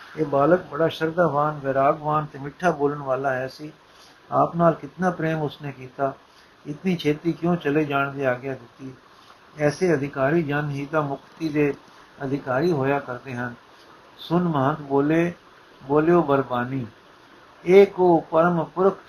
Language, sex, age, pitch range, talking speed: Punjabi, male, 60-79, 140-165 Hz, 130 wpm